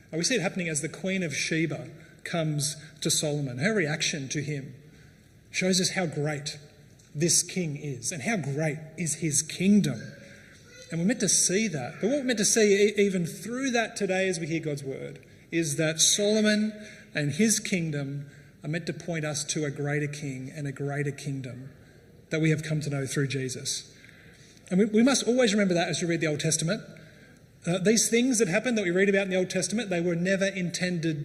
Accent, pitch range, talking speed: Australian, 150-190 Hz, 205 wpm